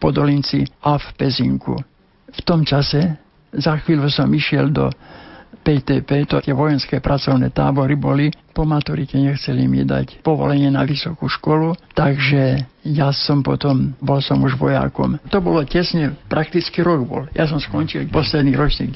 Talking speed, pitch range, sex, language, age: 150 wpm, 135-155 Hz, male, Slovak, 60-79